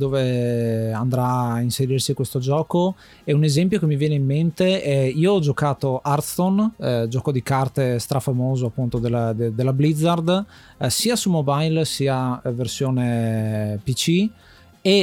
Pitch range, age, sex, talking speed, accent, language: 125-150 Hz, 30-49, male, 140 wpm, native, Italian